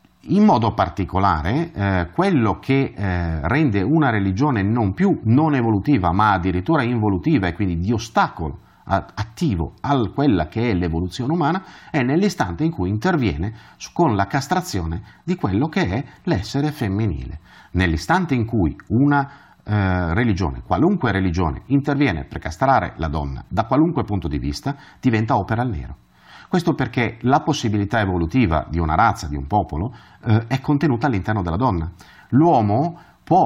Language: Italian